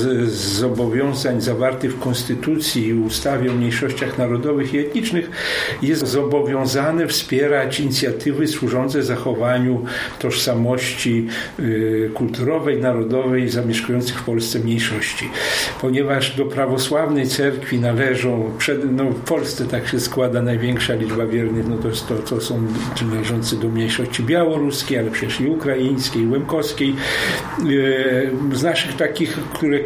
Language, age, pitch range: Polish, 50-69, 125-150 Hz